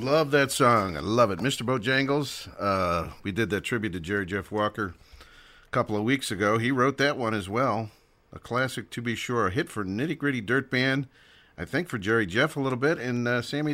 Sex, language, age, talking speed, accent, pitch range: male, English, 50-69, 225 wpm, American, 100-135 Hz